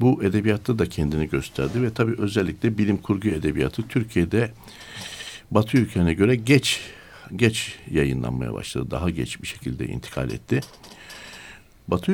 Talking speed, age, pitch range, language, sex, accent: 130 wpm, 60-79, 95-130 Hz, Turkish, male, native